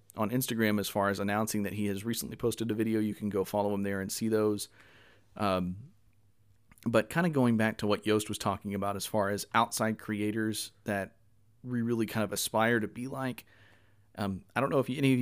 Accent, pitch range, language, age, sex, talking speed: American, 105-120 Hz, English, 40-59, male, 215 wpm